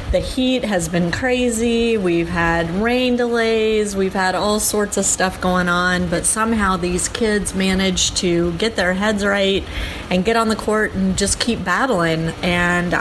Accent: American